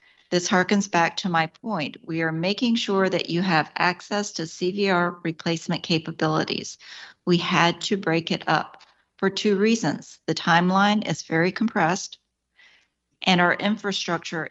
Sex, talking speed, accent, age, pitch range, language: female, 145 wpm, American, 40-59, 170-205 Hz, English